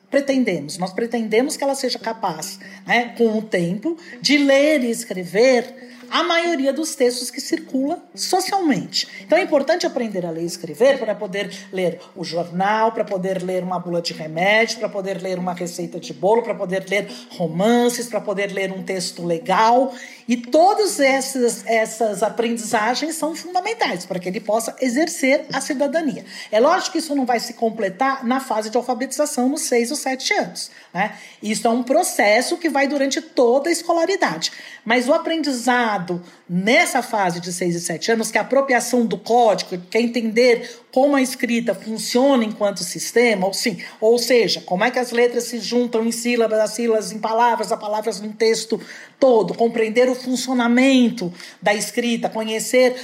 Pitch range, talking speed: 205-265 Hz, 175 wpm